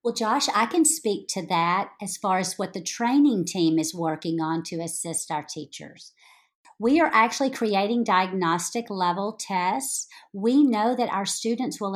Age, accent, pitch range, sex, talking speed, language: 50-69, American, 180-235 Hz, female, 170 wpm, English